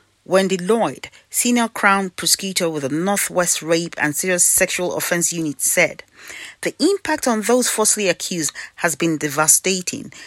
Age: 40-59